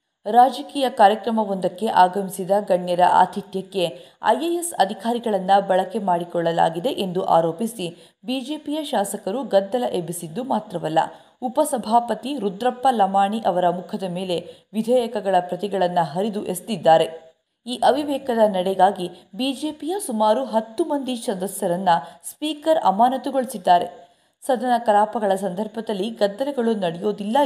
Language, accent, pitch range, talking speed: Kannada, native, 180-245 Hz, 90 wpm